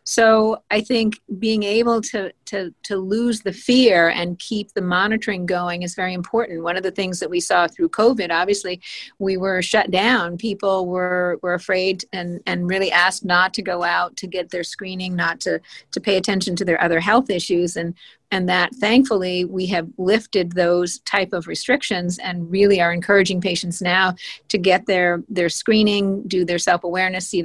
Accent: American